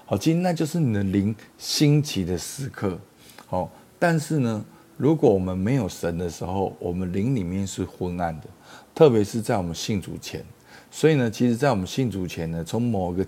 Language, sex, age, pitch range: Chinese, male, 50-69, 90-120 Hz